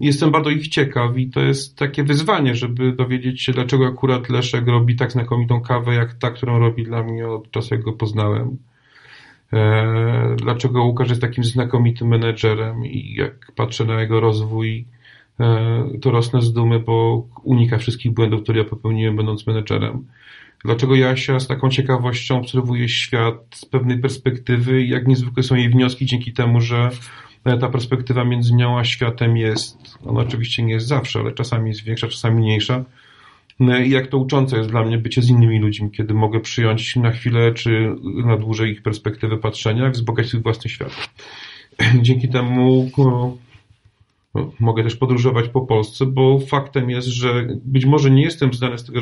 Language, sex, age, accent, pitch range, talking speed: Polish, male, 40-59, native, 115-130 Hz, 170 wpm